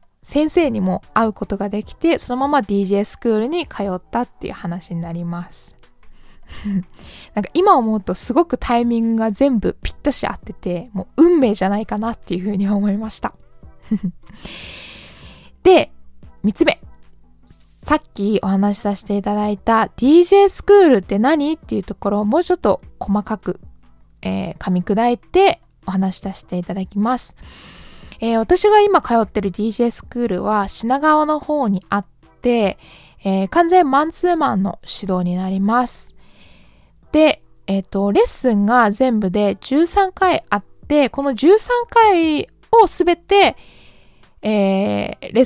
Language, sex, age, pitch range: Japanese, female, 20-39, 195-285 Hz